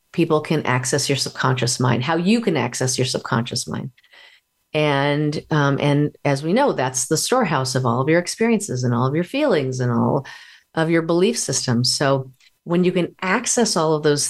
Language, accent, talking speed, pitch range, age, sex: English, American, 195 wpm, 135-180 Hz, 40-59, female